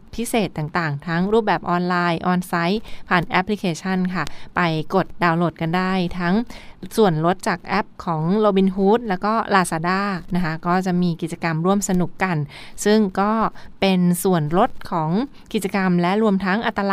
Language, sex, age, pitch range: Thai, female, 20-39, 170-210 Hz